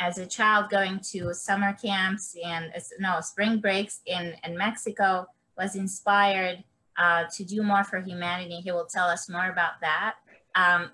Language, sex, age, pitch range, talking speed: English, female, 20-39, 175-220 Hz, 165 wpm